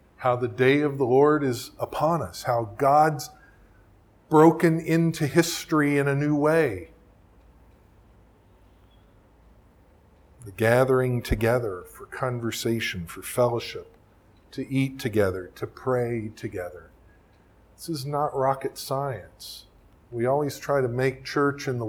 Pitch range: 100-140 Hz